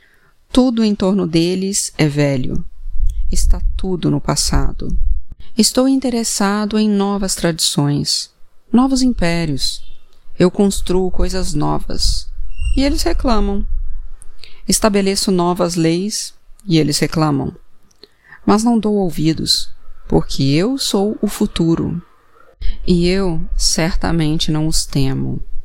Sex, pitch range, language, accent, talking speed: female, 150-200 Hz, Portuguese, Brazilian, 105 wpm